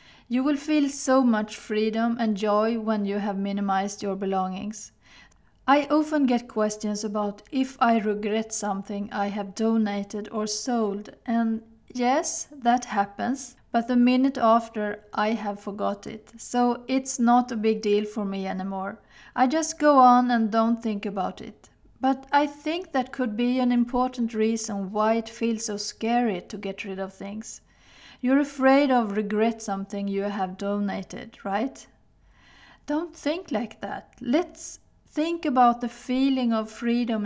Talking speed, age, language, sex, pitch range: 155 wpm, 40-59, Swedish, female, 210-255 Hz